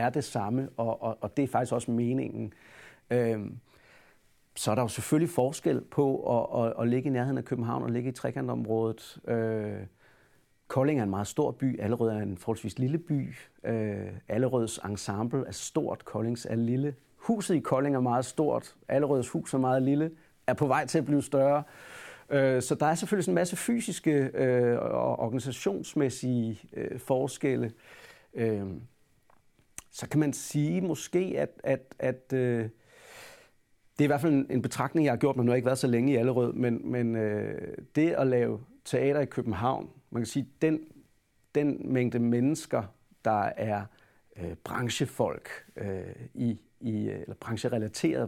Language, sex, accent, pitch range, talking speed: Danish, male, native, 115-140 Hz, 175 wpm